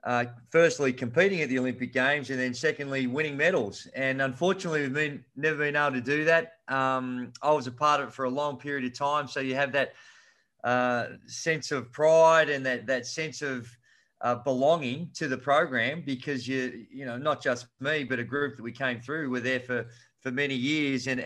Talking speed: 210 wpm